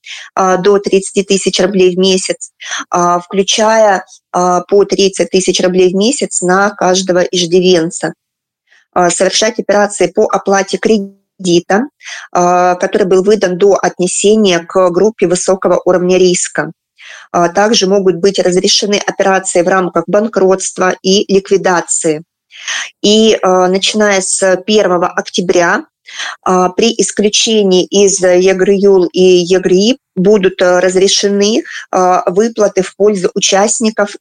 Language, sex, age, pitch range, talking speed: Russian, female, 20-39, 180-200 Hz, 100 wpm